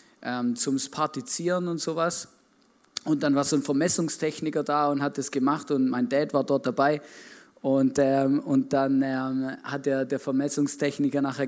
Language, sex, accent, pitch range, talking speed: German, male, German, 140-185 Hz, 160 wpm